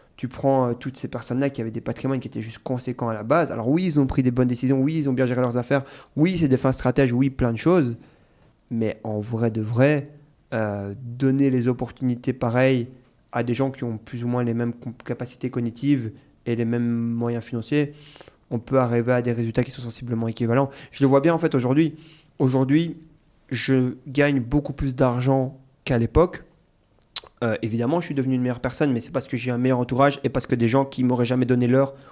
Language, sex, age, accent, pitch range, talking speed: French, male, 30-49, French, 120-140 Hz, 220 wpm